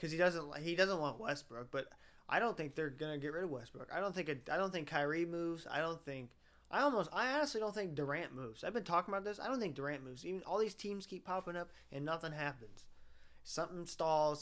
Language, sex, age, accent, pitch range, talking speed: English, male, 20-39, American, 125-155 Hz, 245 wpm